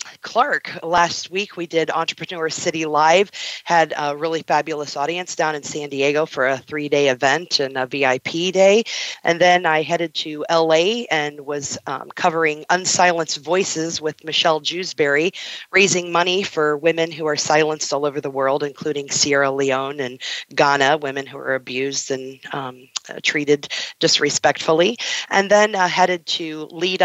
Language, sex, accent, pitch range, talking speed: English, female, American, 145-170 Hz, 155 wpm